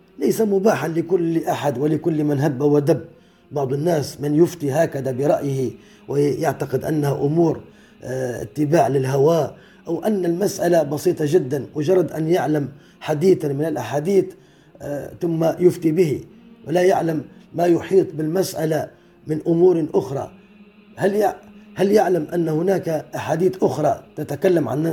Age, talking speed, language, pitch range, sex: 30-49, 120 wpm, Arabic, 150-190 Hz, male